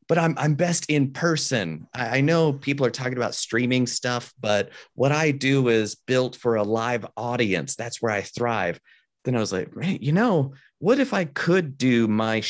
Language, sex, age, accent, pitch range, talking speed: English, male, 30-49, American, 105-130 Hz, 195 wpm